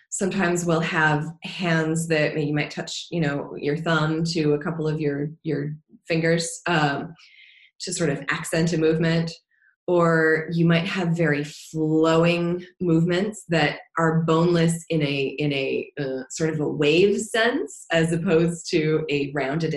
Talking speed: 155 wpm